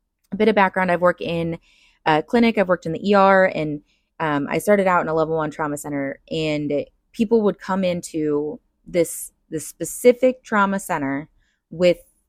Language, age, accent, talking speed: English, 20-39, American, 175 wpm